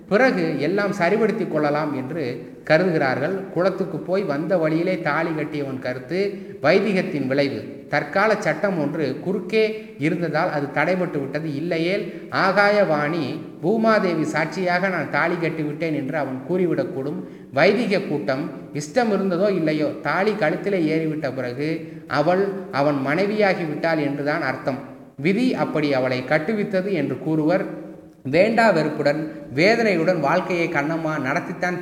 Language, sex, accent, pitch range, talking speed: Tamil, male, native, 145-190 Hz, 110 wpm